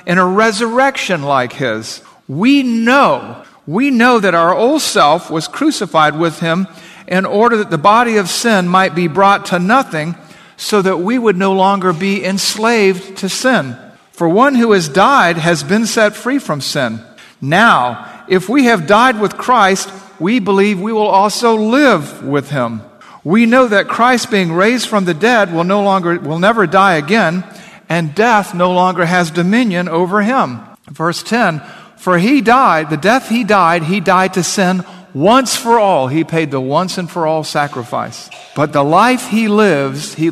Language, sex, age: English, male, 50-69